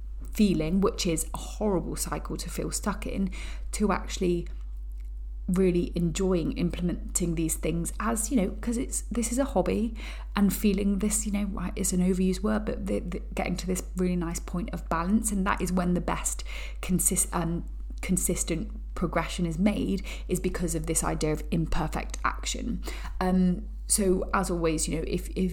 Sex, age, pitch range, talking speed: female, 30-49, 165-195 Hz, 170 wpm